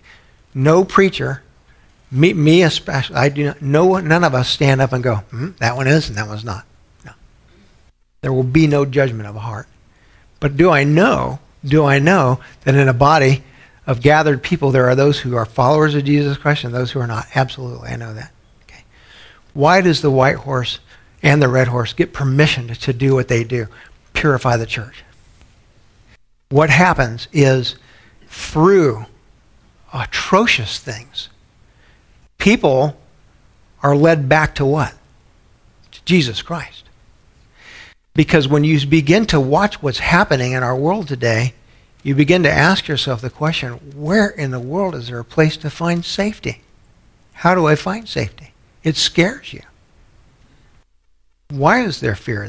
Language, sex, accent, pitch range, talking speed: English, male, American, 120-155 Hz, 160 wpm